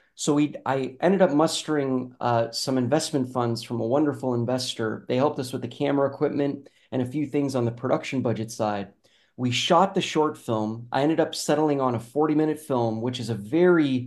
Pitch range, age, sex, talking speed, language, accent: 115-145 Hz, 30-49, male, 195 wpm, English, American